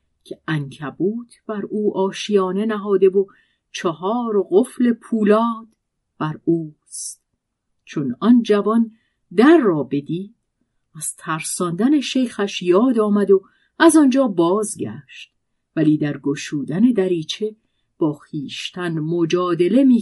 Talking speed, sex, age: 110 wpm, female, 50-69